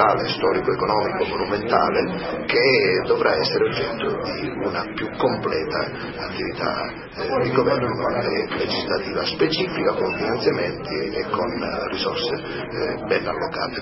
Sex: male